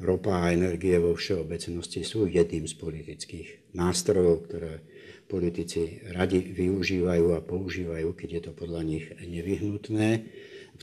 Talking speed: 125 wpm